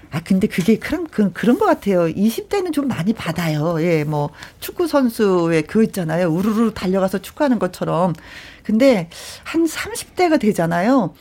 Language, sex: Korean, female